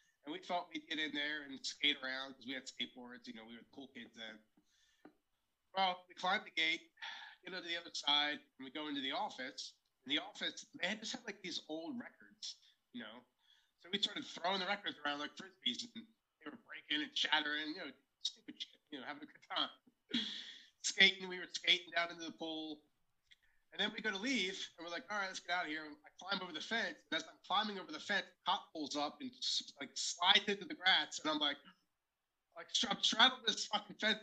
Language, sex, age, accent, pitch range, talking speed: English, male, 30-49, American, 160-245 Hz, 235 wpm